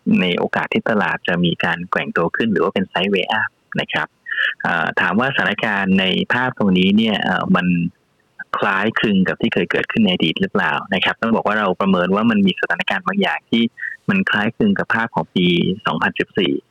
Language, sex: Thai, male